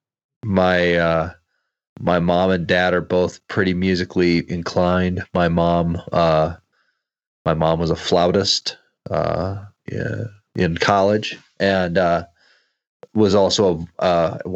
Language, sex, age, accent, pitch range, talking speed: English, male, 30-49, American, 85-100 Hz, 115 wpm